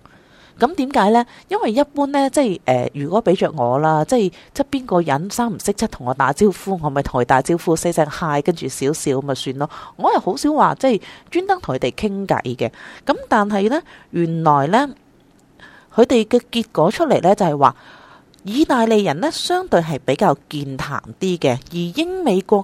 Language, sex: Chinese, female